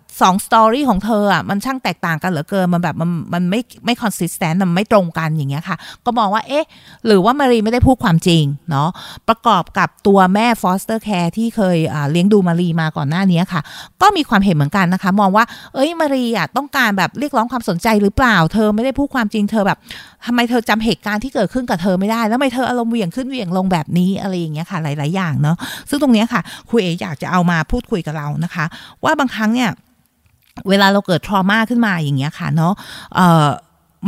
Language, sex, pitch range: Thai, female, 170-220 Hz